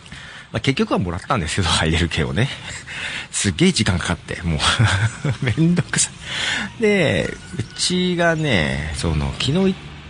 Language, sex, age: Japanese, male, 40-59